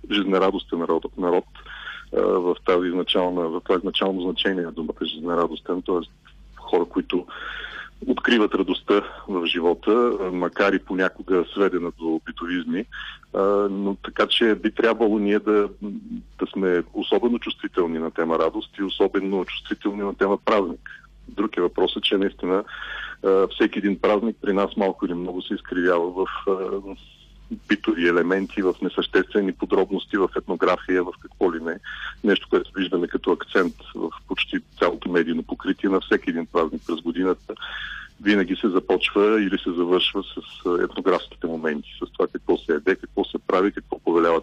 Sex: male